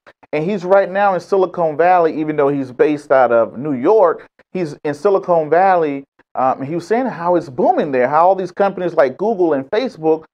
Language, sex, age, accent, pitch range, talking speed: English, male, 30-49, American, 145-195 Hz, 210 wpm